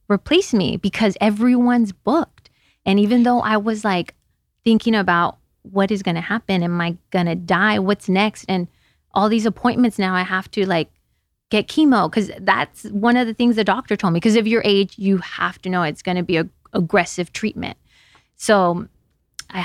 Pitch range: 175-210 Hz